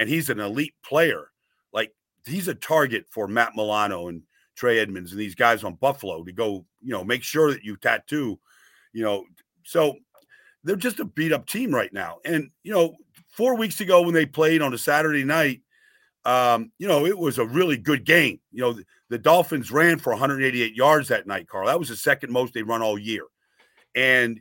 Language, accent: English, American